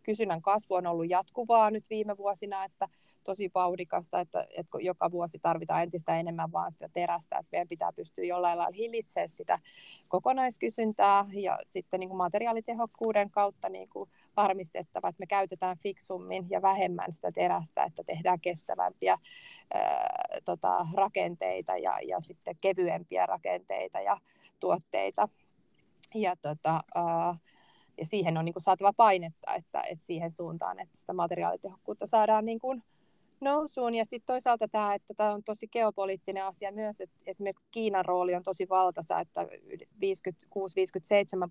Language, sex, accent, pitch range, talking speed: Finnish, female, native, 175-215 Hz, 140 wpm